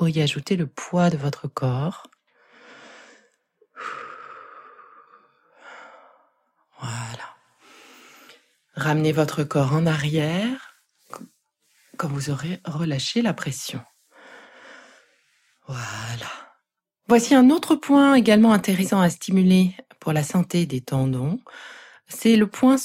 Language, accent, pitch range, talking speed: French, French, 150-220 Hz, 95 wpm